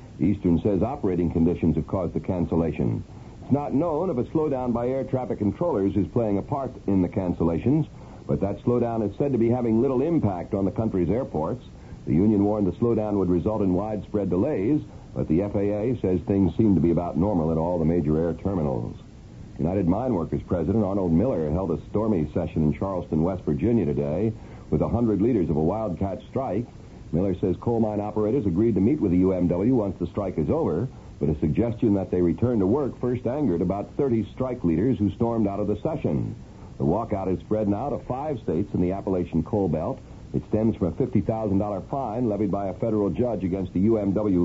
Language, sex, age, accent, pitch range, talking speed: English, male, 60-79, American, 90-110 Hz, 205 wpm